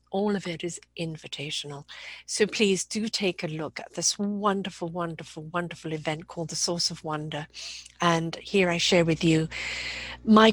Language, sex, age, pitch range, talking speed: English, female, 50-69, 155-195 Hz, 165 wpm